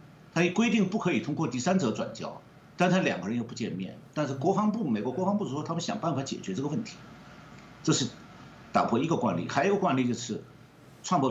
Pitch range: 120-190 Hz